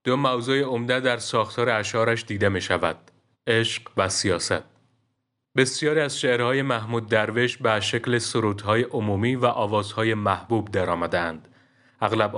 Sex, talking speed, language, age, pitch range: male, 130 wpm, Persian, 30-49, 105-125 Hz